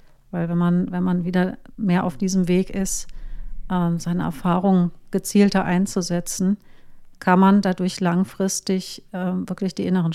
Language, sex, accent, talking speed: German, female, German, 130 wpm